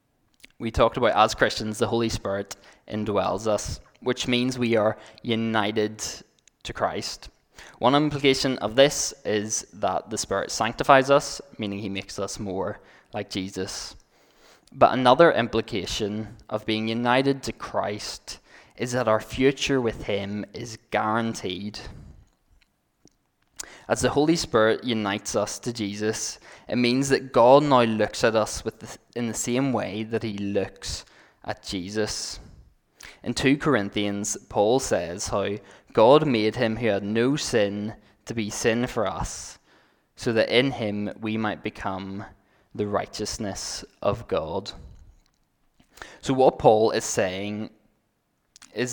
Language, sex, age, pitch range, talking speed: English, male, 10-29, 105-125 Hz, 135 wpm